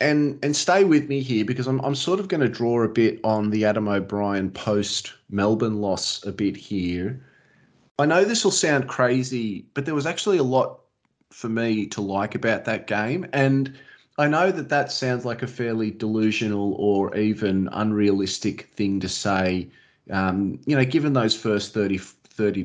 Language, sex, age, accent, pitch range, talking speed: English, male, 30-49, Australian, 100-135 Hz, 180 wpm